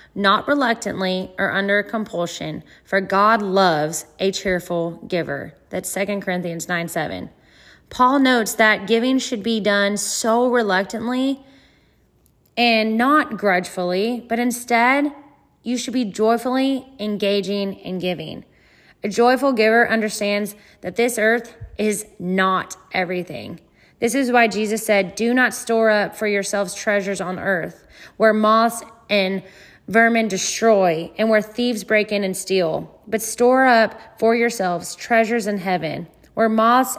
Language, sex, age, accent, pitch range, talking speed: English, female, 10-29, American, 185-230 Hz, 135 wpm